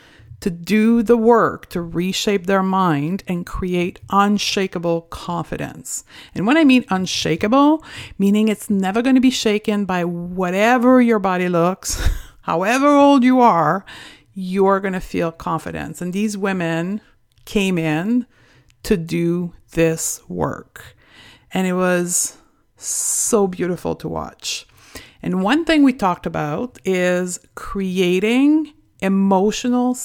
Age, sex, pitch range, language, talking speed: 50-69, female, 170-215 Hz, English, 125 wpm